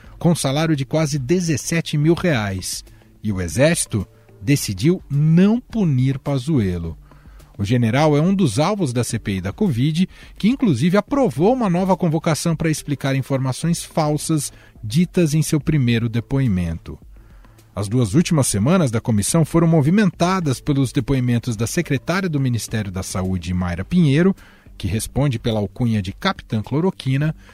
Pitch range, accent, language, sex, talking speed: 110-170 Hz, Brazilian, Portuguese, male, 140 wpm